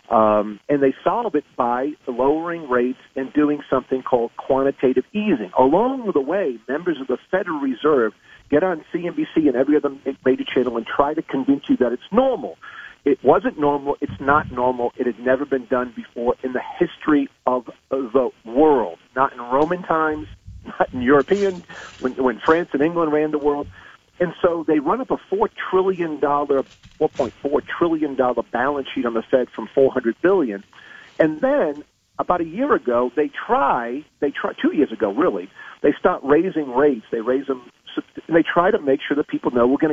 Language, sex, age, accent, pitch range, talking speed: English, male, 50-69, American, 130-175 Hz, 185 wpm